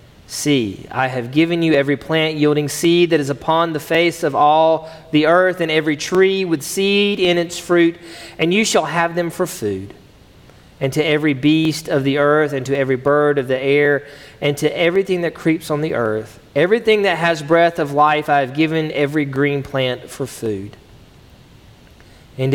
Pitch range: 125-160 Hz